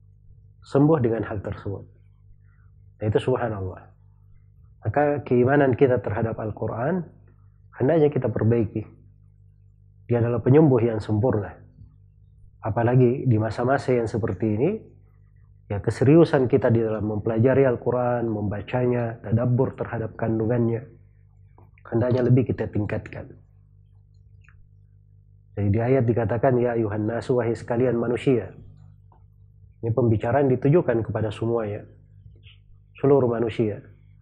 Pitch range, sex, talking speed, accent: 105-125 Hz, male, 100 wpm, native